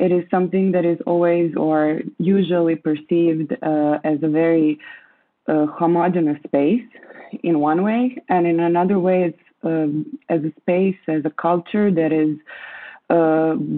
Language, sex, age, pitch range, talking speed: English, female, 20-39, 155-180 Hz, 150 wpm